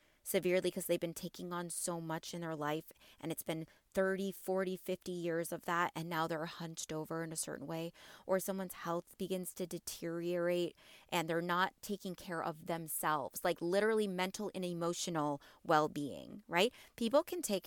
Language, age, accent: English, 20-39, American